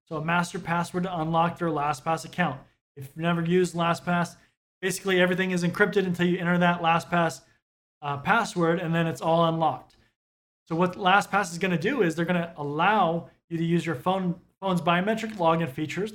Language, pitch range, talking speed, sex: English, 160-185 Hz, 180 wpm, male